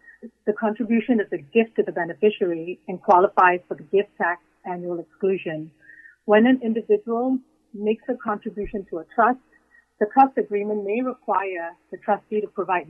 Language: English